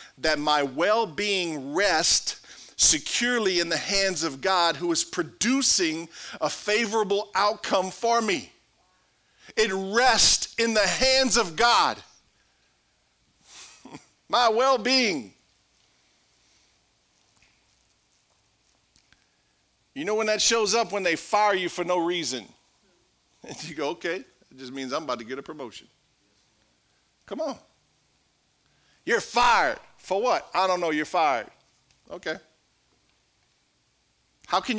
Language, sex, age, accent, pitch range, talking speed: English, male, 50-69, American, 160-210 Hz, 115 wpm